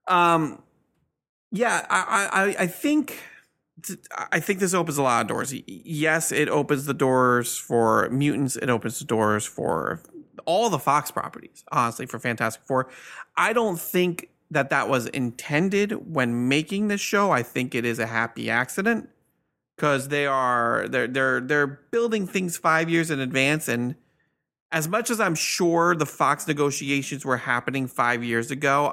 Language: English